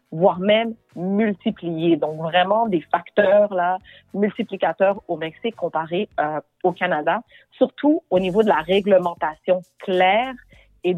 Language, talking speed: French, 125 wpm